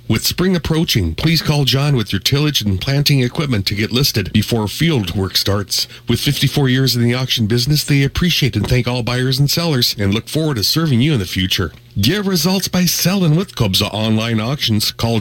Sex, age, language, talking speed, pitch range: male, 40-59, English, 205 wpm, 110-150 Hz